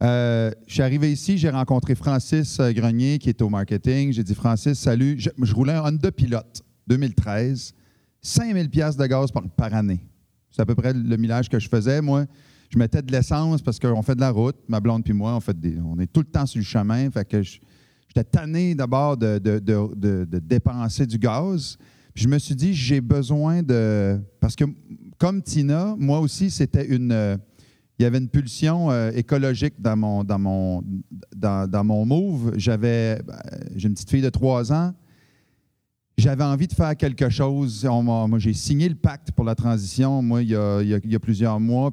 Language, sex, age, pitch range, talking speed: French, male, 40-59, 110-145 Hz, 210 wpm